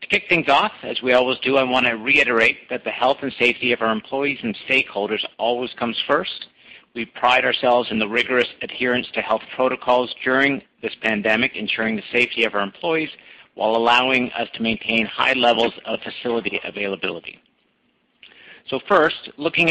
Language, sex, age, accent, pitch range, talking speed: English, male, 50-69, American, 110-135 Hz, 175 wpm